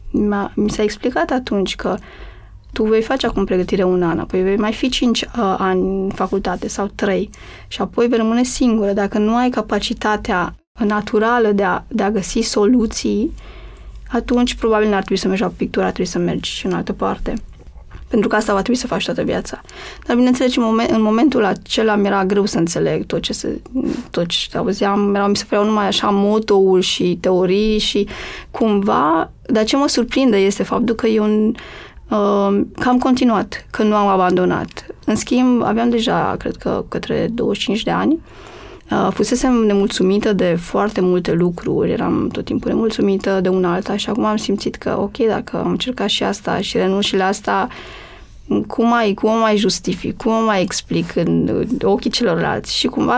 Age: 20-39